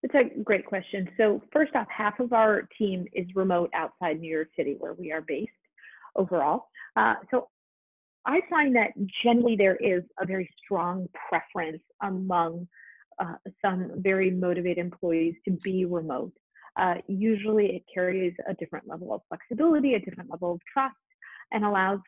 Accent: American